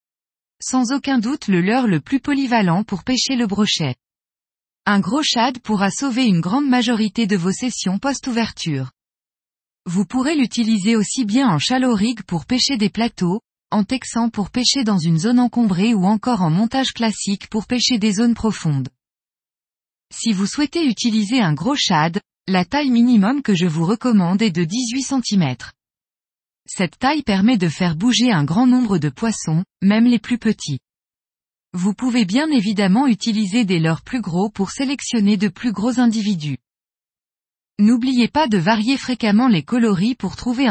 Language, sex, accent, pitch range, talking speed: French, female, French, 185-245 Hz, 165 wpm